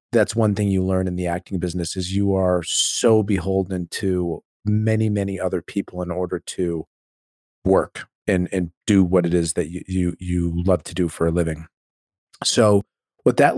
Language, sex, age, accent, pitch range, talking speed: English, male, 40-59, American, 95-105 Hz, 185 wpm